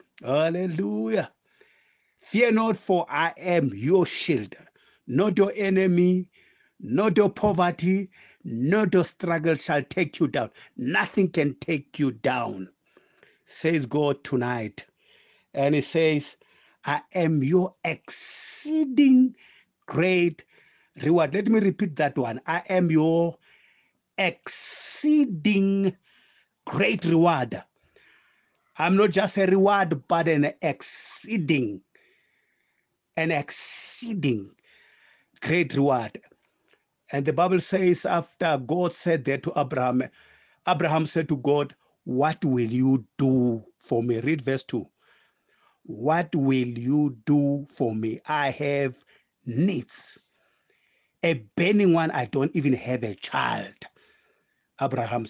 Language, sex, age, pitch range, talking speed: English, male, 60-79, 135-185 Hz, 110 wpm